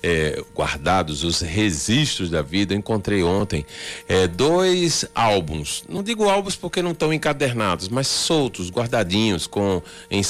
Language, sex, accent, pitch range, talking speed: Portuguese, male, Brazilian, 90-115 Hz, 115 wpm